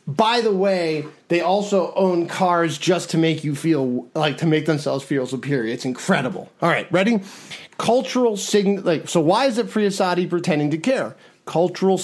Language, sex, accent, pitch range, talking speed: English, male, American, 155-200 Hz, 170 wpm